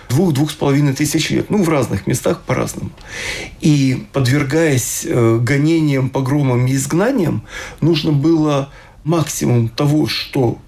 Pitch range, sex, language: 135-165 Hz, male, Russian